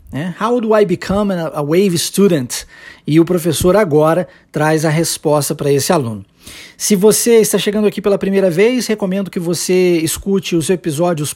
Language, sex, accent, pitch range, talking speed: Portuguese, male, Brazilian, 155-205 Hz, 170 wpm